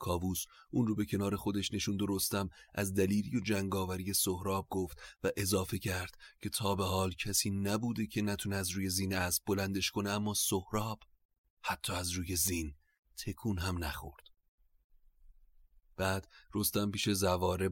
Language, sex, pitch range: Persian, male, 80-95 Hz